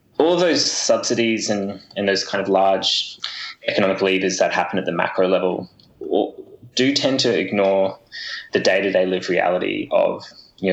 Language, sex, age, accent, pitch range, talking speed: English, male, 20-39, Australian, 95-105 Hz, 170 wpm